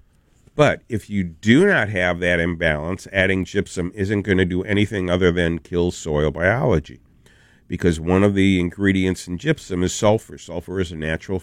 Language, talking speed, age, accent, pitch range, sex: English, 175 wpm, 50-69, American, 85-95 Hz, male